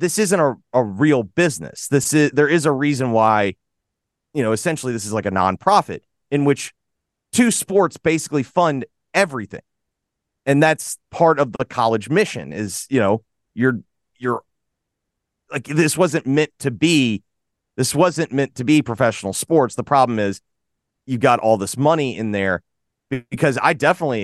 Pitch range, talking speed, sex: 110-150 Hz, 165 wpm, male